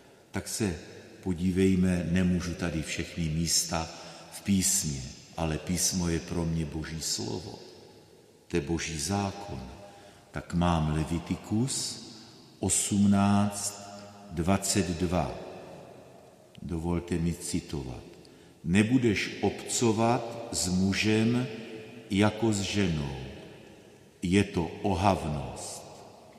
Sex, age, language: male, 50-69, Slovak